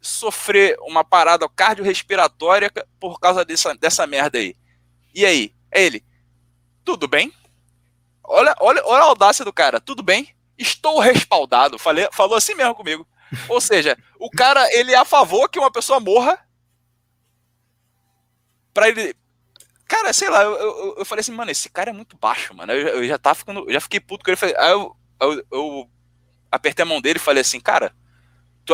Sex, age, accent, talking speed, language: male, 20-39, Brazilian, 175 wpm, Portuguese